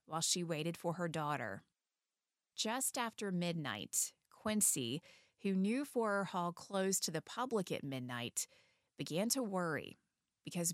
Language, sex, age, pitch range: English, female, 30-49, 165-200 Hz